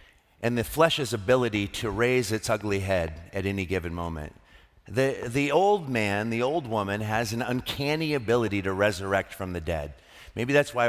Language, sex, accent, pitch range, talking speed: English, male, American, 95-145 Hz, 175 wpm